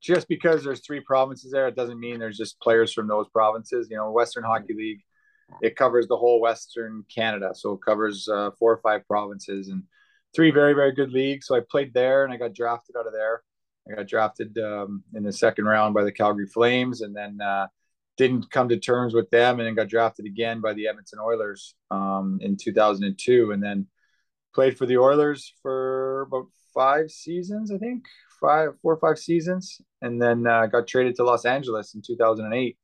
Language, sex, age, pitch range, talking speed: English, male, 20-39, 105-130 Hz, 205 wpm